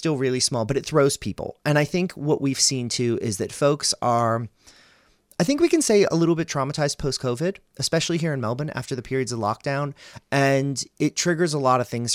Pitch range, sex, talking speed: 110-150 Hz, male, 215 wpm